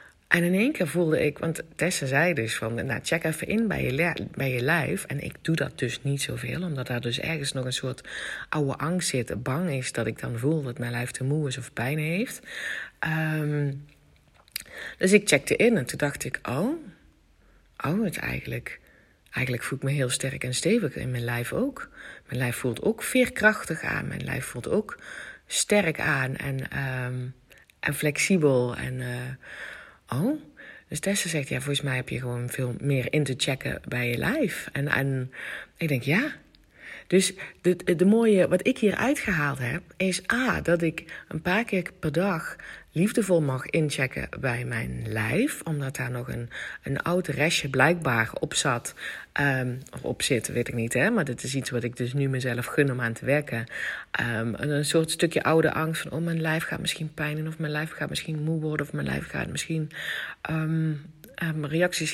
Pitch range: 130-170 Hz